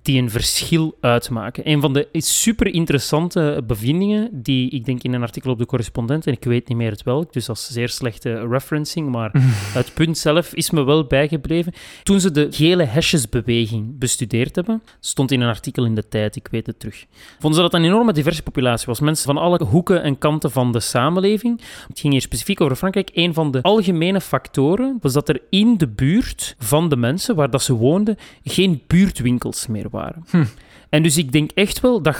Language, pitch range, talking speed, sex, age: Dutch, 125-165 Hz, 205 wpm, male, 30-49